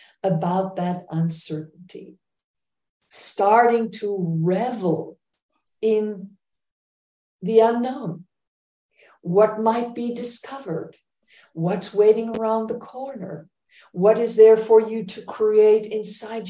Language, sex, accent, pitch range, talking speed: English, female, American, 175-225 Hz, 95 wpm